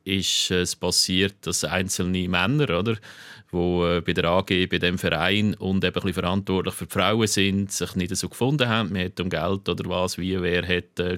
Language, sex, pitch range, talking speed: German, male, 90-105 Hz, 210 wpm